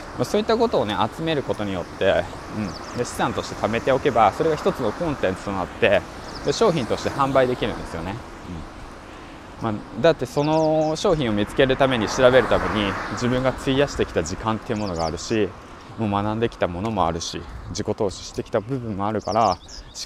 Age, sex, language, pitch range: 20-39, male, Japanese, 95-130 Hz